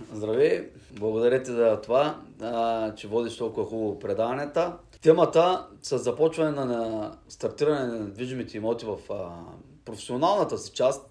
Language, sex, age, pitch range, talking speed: Bulgarian, male, 30-49, 120-155 Hz, 120 wpm